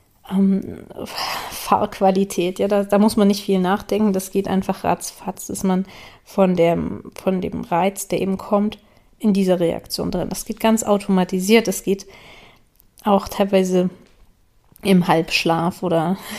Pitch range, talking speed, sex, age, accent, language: 190-205 Hz, 145 wpm, female, 30-49, German, German